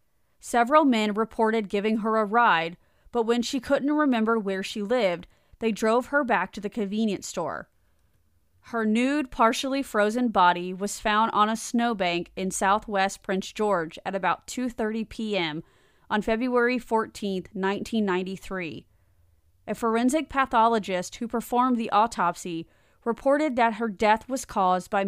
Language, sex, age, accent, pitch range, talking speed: English, female, 30-49, American, 190-235 Hz, 140 wpm